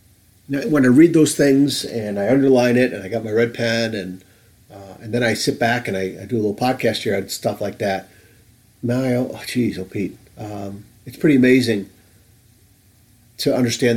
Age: 40-59